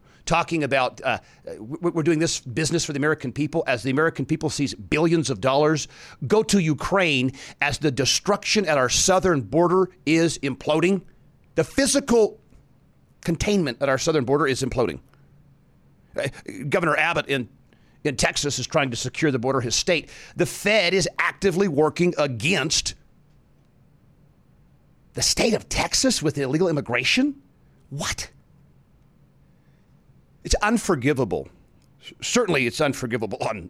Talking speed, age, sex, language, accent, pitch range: 130 wpm, 40-59, male, English, American, 130-170 Hz